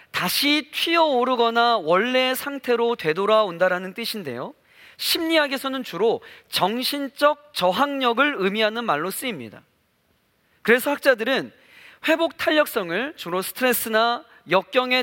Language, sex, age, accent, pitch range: Korean, male, 40-59, native, 230-295 Hz